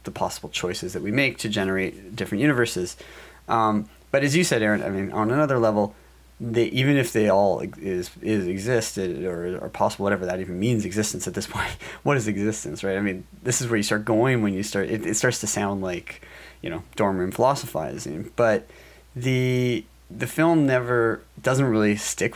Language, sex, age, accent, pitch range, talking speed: English, male, 30-49, American, 100-125 Hz, 200 wpm